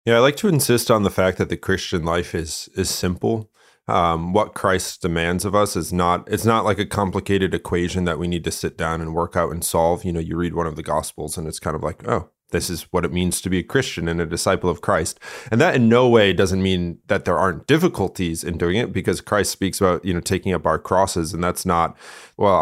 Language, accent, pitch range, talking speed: English, American, 85-100 Hz, 255 wpm